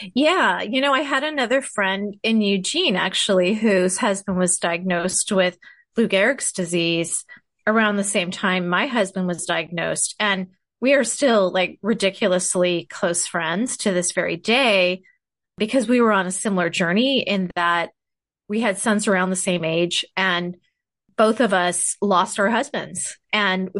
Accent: American